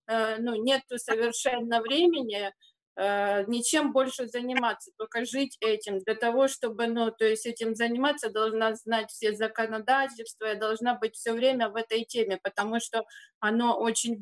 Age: 30-49